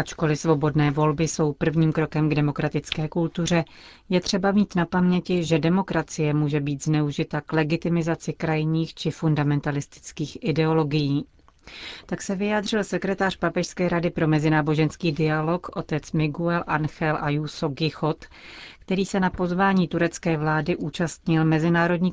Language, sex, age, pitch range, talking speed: Czech, female, 40-59, 150-170 Hz, 125 wpm